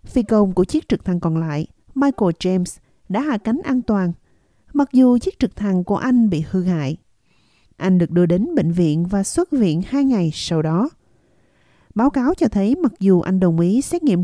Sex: female